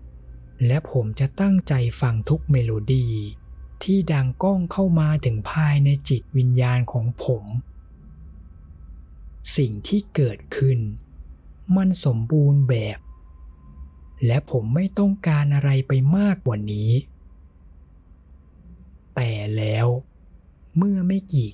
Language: Thai